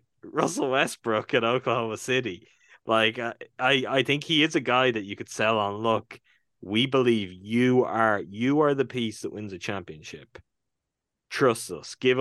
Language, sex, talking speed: English, male, 165 wpm